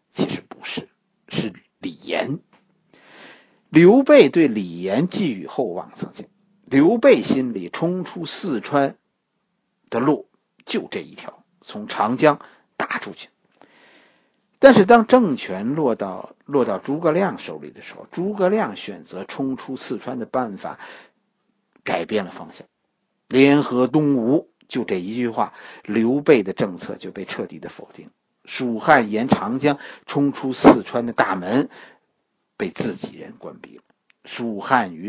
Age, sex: 50-69, male